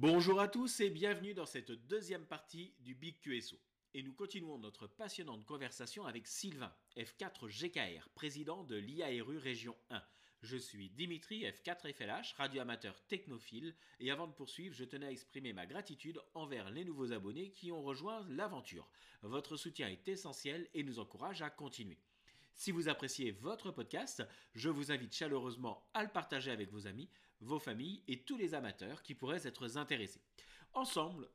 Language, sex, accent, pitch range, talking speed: French, male, French, 120-170 Hz, 165 wpm